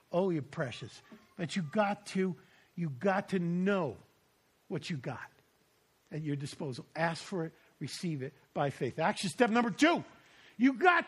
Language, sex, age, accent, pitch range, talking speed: English, male, 50-69, American, 180-240 Hz, 165 wpm